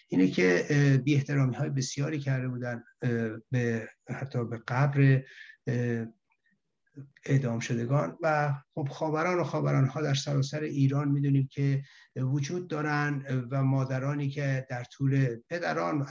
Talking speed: 115 wpm